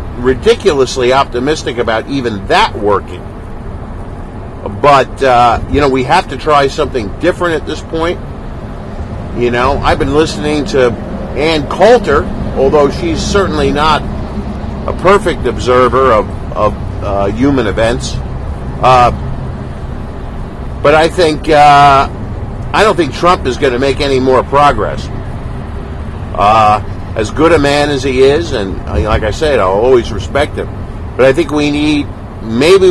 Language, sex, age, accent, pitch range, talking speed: English, male, 50-69, American, 100-145 Hz, 140 wpm